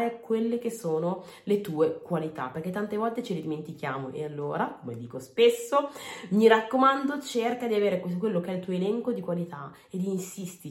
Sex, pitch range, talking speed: female, 155-215 Hz, 180 wpm